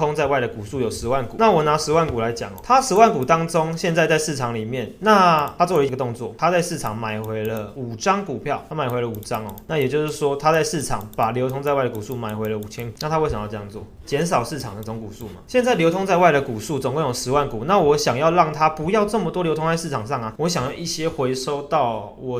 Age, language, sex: 20-39, Chinese, male